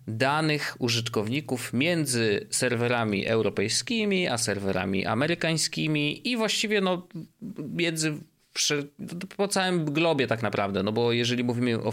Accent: native